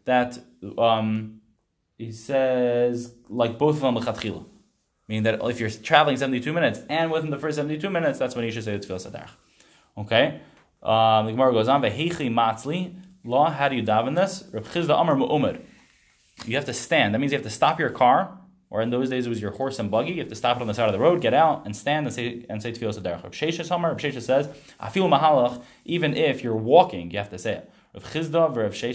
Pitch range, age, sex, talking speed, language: 110-145 Hz, 10-29, male, 200 wpm, English